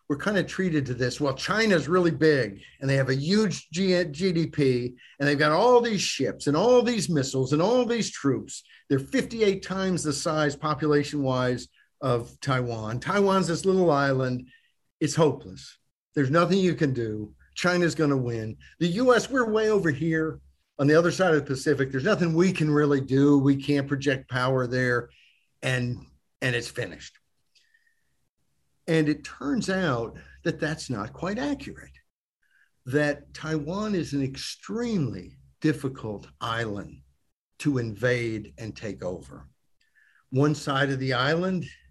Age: 50-69